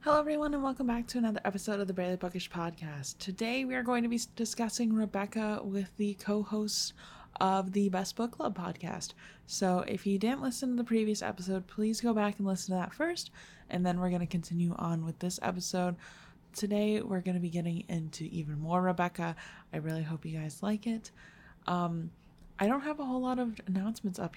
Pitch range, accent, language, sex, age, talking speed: 175-220 Hz, American, English, female, 20-39, 205 wpm